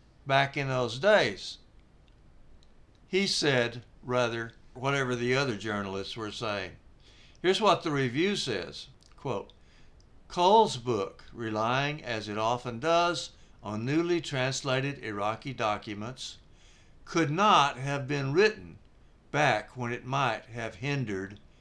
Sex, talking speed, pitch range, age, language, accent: male, 115 wpm, 115-170 Hz, 60-79, English, American